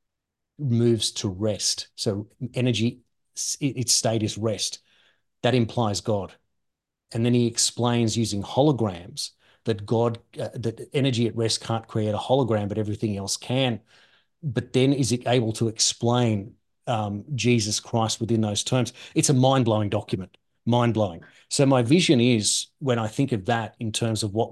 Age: 30-49